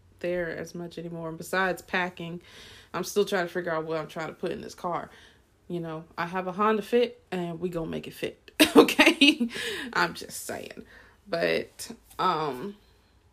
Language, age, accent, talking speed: English, 20-39, American, 180 wpm